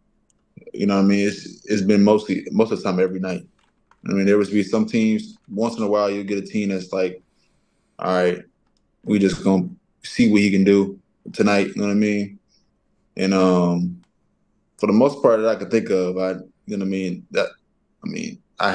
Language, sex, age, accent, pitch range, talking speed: English, male, 20-39, American, 95-105 Hz, 220 wpm